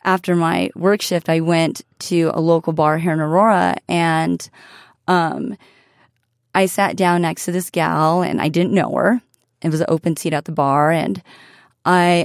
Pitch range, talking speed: 165-210 Hz, 180 wpm